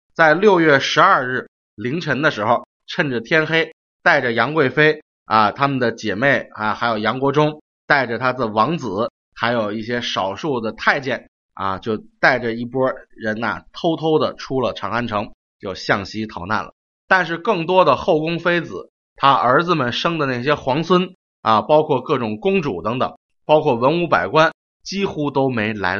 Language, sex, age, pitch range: Chinese, male, 30-49, 105-155 Hz